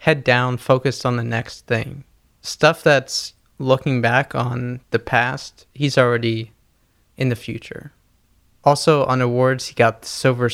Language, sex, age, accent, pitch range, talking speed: English, male, 20-39, American, 120-130 Hz, 150 wpm